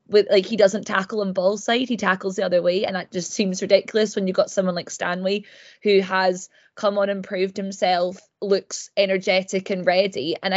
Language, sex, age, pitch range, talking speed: English, female, 20-39, 185-205 Hz, 205 wpm